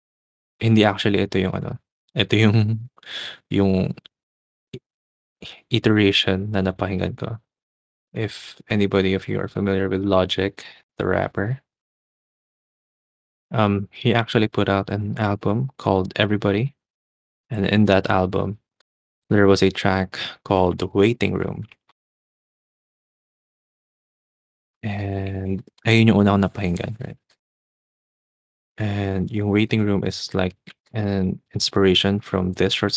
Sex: male